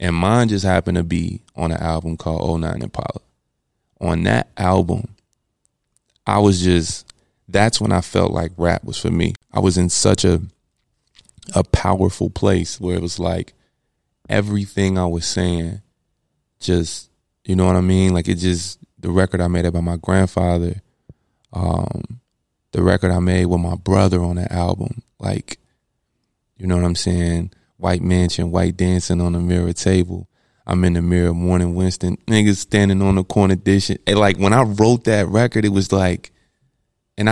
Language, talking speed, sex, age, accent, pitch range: English, 170 wpm, male, 20-39, American, 85-100 Hz